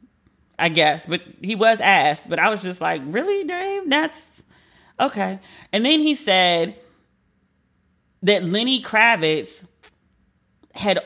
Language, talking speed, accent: English, 125 wpm, American